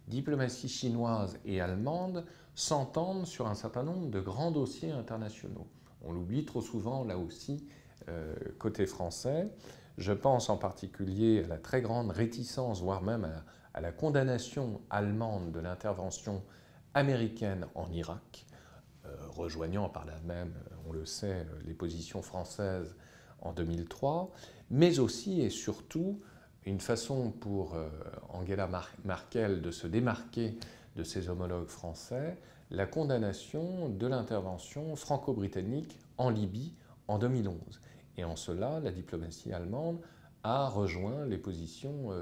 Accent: French